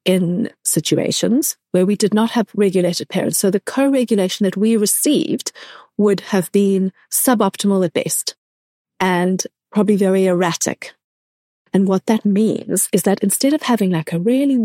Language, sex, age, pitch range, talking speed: English, female, 40-59, 185-235 Hz, 150 wpm